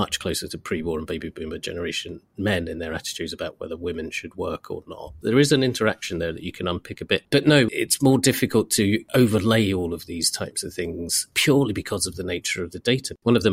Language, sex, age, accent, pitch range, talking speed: English, male, 40-59, British, 85-115 Hz, 240 wpm